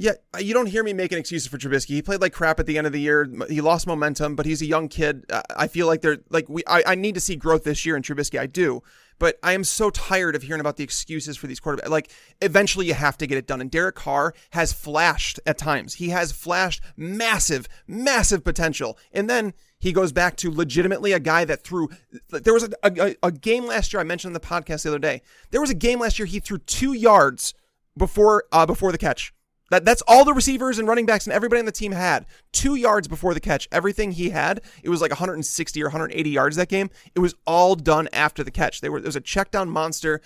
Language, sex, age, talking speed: English, male, 30-49, 245 wpm